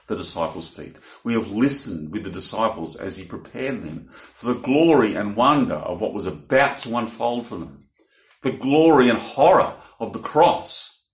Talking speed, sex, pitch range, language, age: 180 wpm, male, 95-125 Hz, English, 50-69